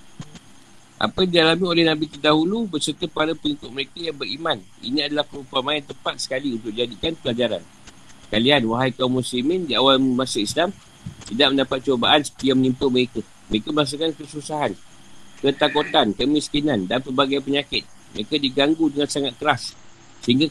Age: 50-69